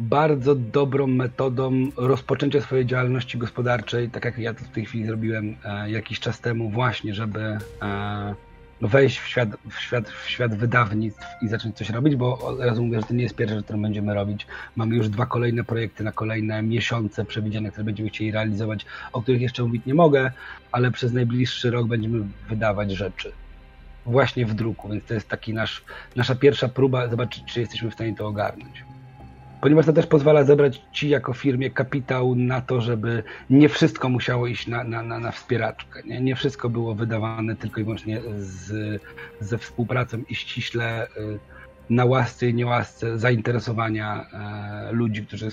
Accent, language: native, Polish